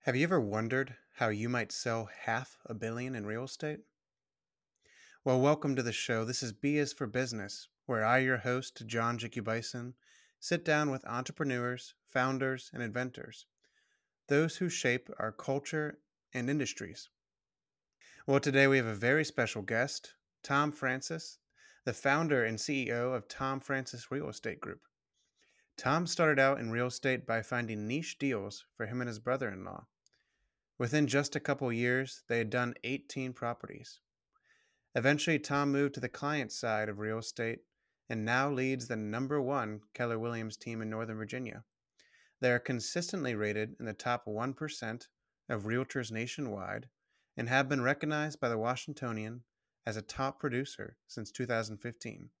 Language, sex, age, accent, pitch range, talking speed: English, male, 30-49, American, 115-140 Hz, 155 wpm